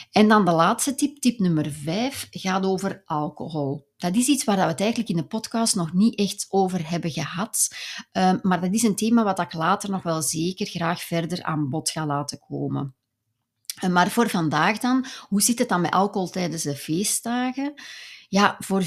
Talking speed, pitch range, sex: 190 wpm, 165-205 Hz, female